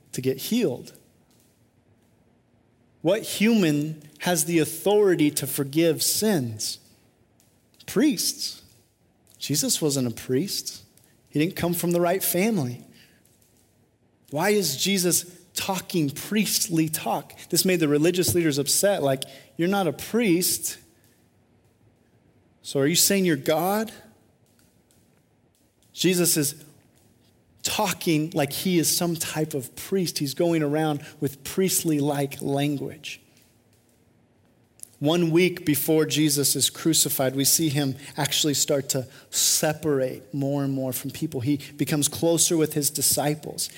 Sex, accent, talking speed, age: male, American, 120 wpm, 30-49